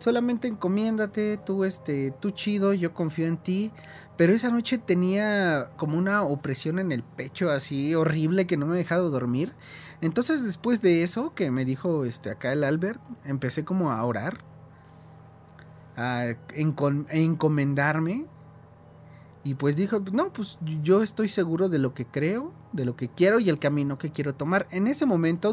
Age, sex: 30-49, male